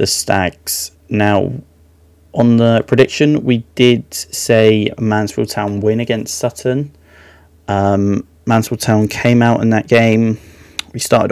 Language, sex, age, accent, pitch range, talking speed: English, male, 20-39, British, 85-110 Hz, 125 wpm